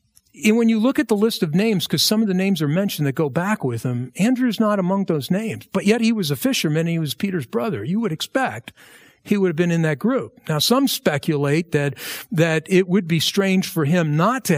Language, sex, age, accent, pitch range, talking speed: English, male, 50-69, American, 155-215 Hz, 245 wpm